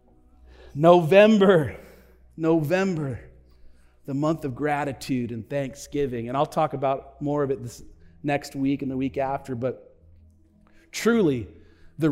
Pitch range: 130-175 Hz